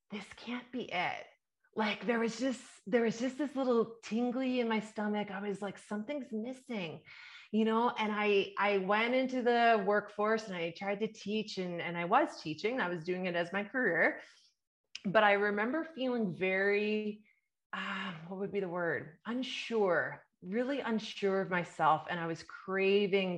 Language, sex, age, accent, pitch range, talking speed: English, female, 30-49, American, 165-215 Hz, 175 wpm